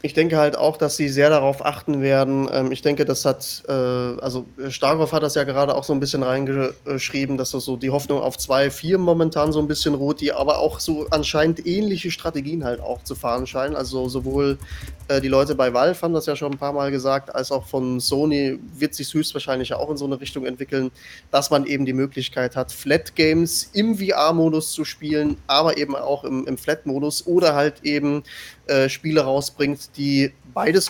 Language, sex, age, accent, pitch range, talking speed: German, male, 20-39, German, 130-150 Hz, 195 wpm